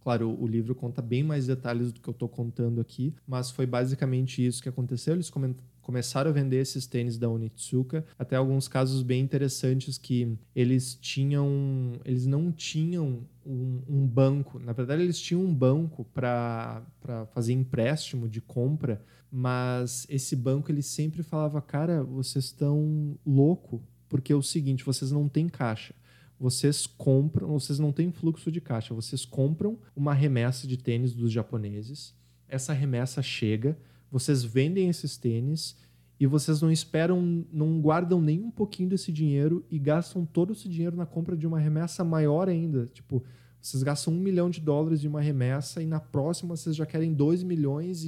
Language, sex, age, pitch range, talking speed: Portuguese, male, 20-39, 125-155 Hz, 170 wpm